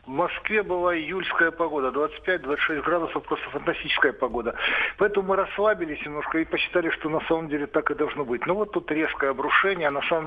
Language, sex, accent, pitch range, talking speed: Russian, male, native, 135-175 Hz, 185 wpm